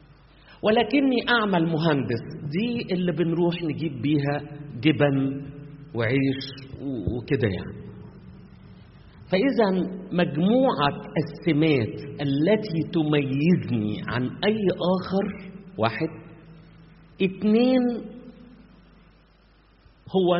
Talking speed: 70 wpm